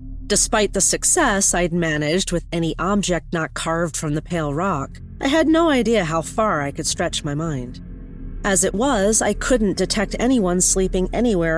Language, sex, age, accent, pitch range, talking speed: English, female, 40-59, American, 150-205 Hz, 175 wpm